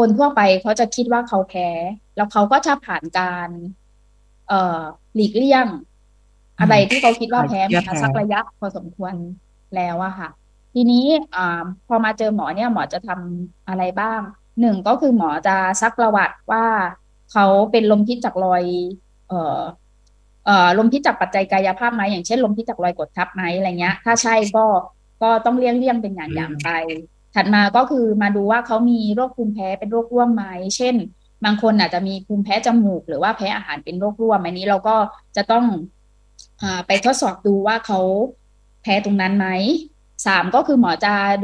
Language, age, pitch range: English, 20-39, 180-230 Hz